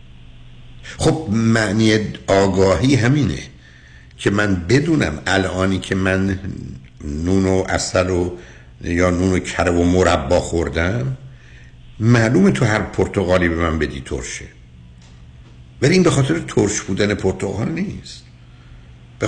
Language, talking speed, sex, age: Persian, 120 wpm, male, 60-79